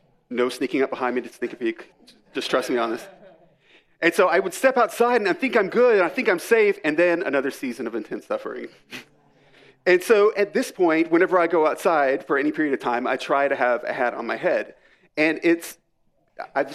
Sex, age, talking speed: male, 40-59, 225 wpm